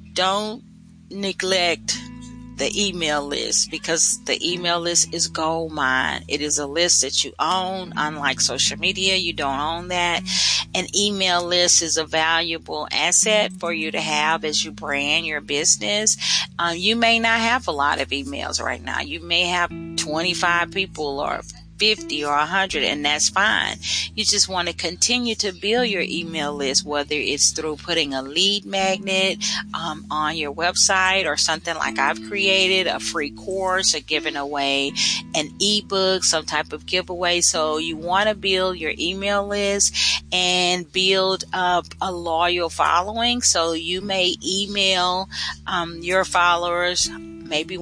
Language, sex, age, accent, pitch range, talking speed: English, female, 40-59, American, 150-190 Hz, 160 wpm